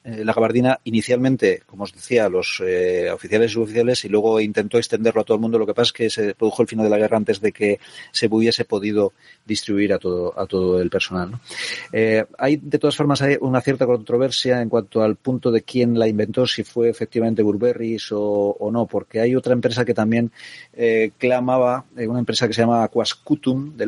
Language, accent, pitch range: Spanish, Spanish, 105-125 Hz